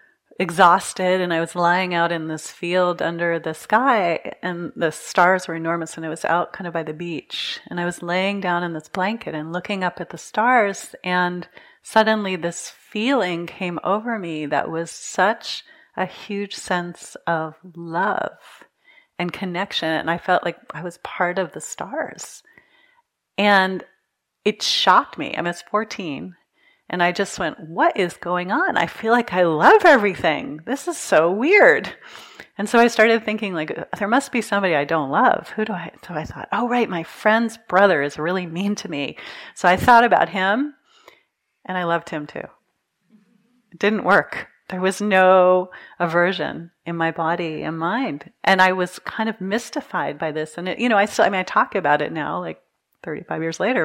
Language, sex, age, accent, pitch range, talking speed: English, female, 30-49, American, 170-220 Hz, 185 wpm